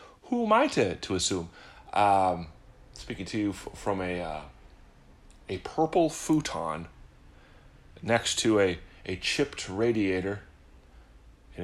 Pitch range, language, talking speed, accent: 85-125 Hz, English, 120 wpm, American